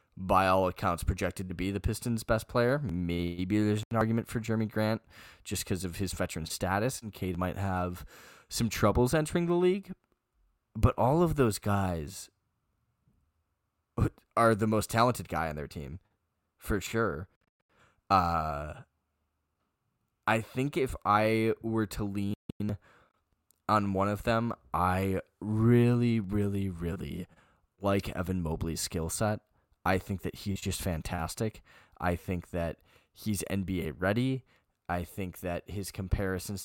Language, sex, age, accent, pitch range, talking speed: English, male, 10-29, American, 90-110 Hz, 140 wpm